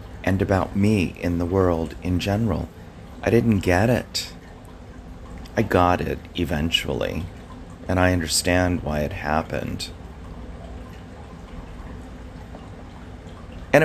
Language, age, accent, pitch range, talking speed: English, 40-59, American, 85-100 Hz, 100 wpm